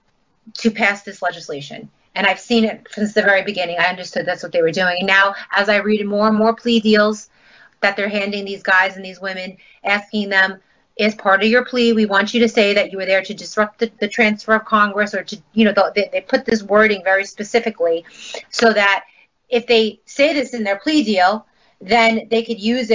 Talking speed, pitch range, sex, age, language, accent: 220 wpm, 195-230 Hz, female, 30-49, English, American